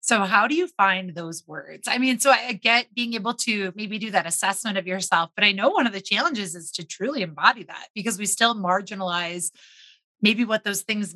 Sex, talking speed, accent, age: female, 220 wpm, American, 30-49